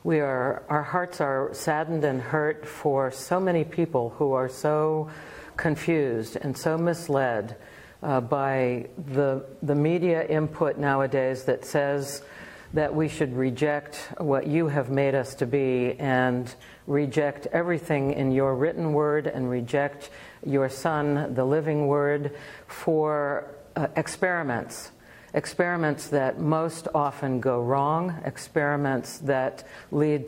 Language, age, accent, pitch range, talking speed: English, 60-79, American, 135-155 Hz, 130 wpm